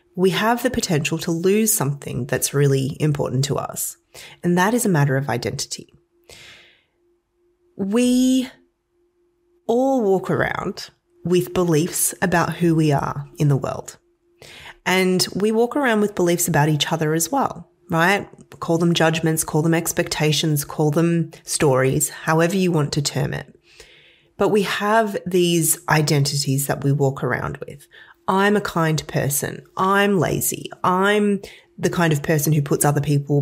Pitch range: 150-205 Hz